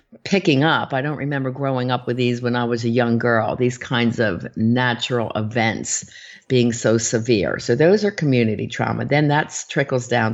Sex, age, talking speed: female, 50-69, 185 wpm